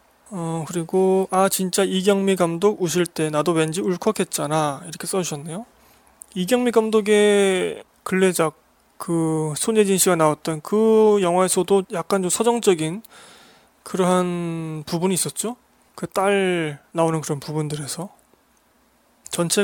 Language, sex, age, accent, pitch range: Korean, male, 20-39, native, 160-190 Hz